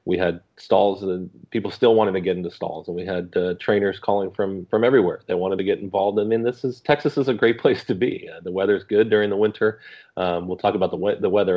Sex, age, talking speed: male, 30-49, 270 wpm